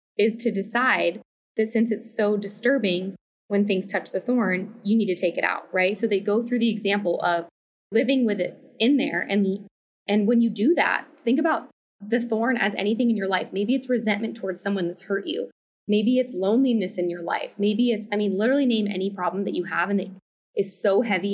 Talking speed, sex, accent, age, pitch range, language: 215 wpm, female, American, 20-39, 195-235 Hz, English